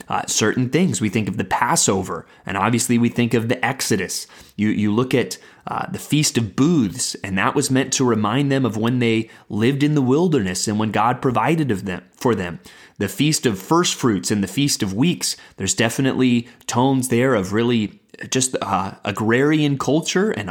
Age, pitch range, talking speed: 30-49, 115-160 Hz, 195 wpm